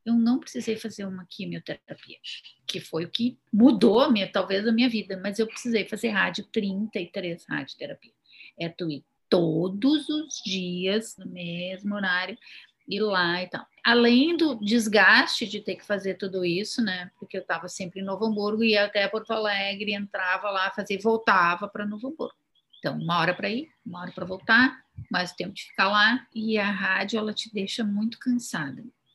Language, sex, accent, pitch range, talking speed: Portuguese, female, Brazilian, 190-235 Hz, 180 wpm